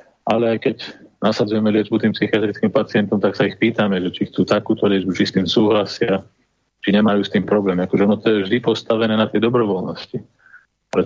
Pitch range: 100-110 Hz